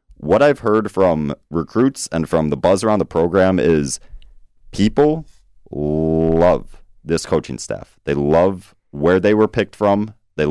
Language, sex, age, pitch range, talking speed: English, male, 30-49, 80-105 Hz, 150 wpm